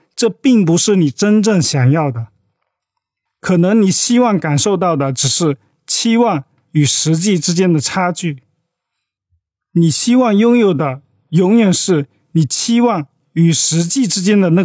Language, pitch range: Chinese, 140-200 Hz